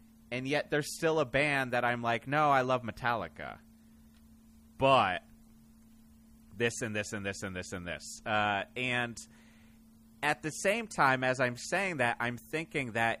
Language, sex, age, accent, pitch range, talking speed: English, male, 30-49, American, 105-130 Hz, 165 wpm